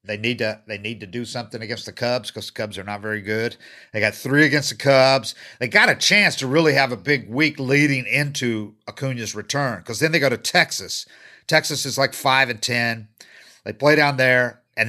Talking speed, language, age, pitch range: 220 wpm, English, 50-69, 110-140 Hz